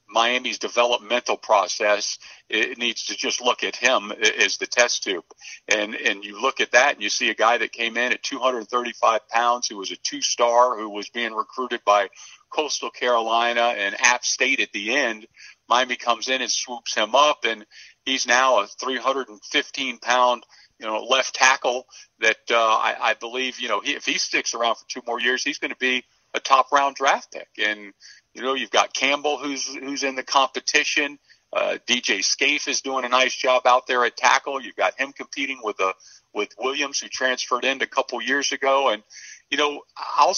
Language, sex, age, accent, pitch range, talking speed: English, male, 50-69, American, 120-140 Hz, 190 wpm